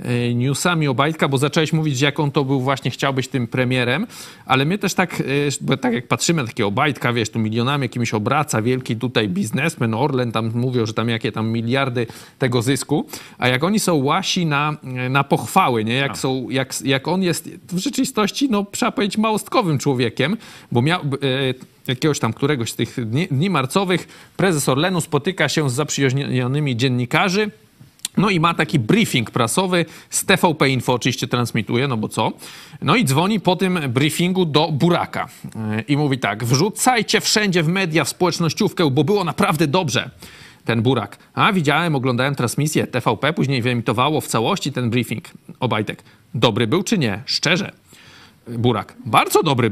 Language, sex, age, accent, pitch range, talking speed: Polish, male, 40-59, native, 125-175 Hz, 170 wpm